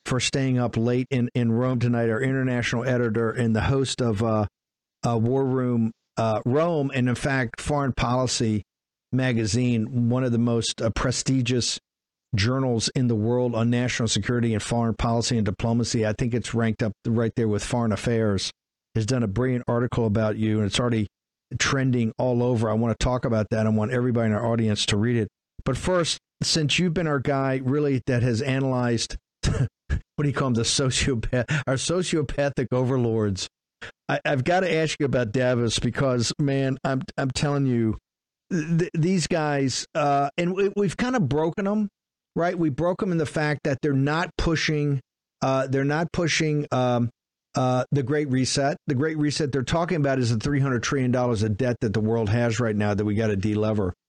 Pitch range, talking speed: 115-140 Hz, 190 wpm